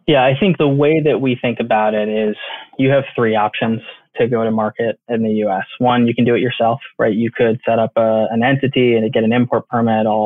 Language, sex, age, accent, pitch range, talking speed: English, male, 20-39, American, 110-120 Hz, 245 wpm